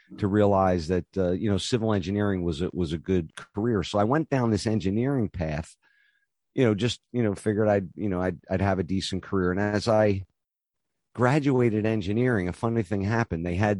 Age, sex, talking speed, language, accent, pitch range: 50-69, male, 205 wpm, English, American, 95-115 Hz